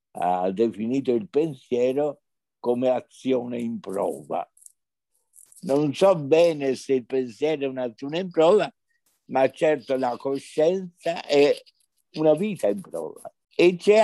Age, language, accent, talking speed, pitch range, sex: 60-79, Italian, native, 125 wpm, 120-180 Hz, male